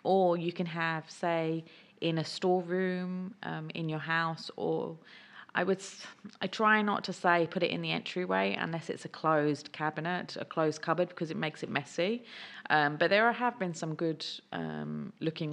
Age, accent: 30-49, British